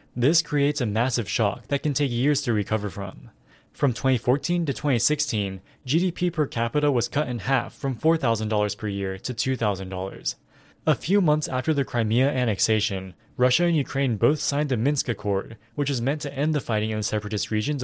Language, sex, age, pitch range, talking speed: English, male, 20-39, 110-145 Hz, 185 wpm